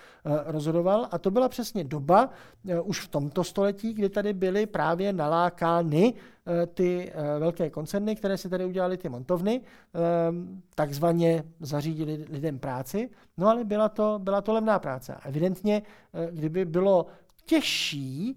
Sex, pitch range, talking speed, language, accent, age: male, 150-180 Hz, 130 wpm, Czech, native, 50-69